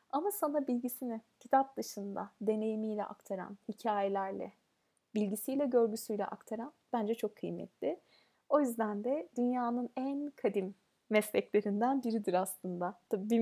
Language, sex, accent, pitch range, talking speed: Turkish, female, native, 210-270 Hz, 110 wpm